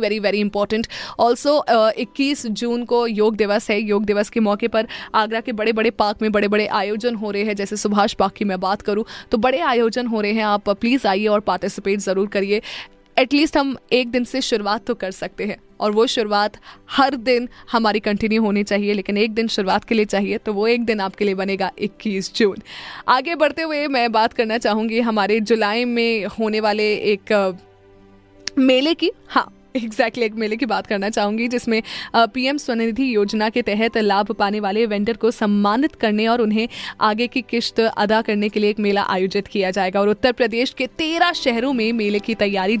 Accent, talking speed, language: native, 200 wpm, Hindi